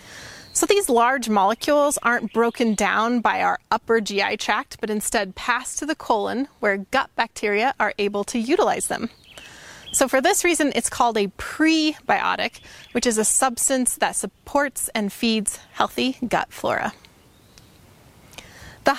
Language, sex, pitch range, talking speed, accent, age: English, female, 215-275 Hz, 145 wpm, American, 30-49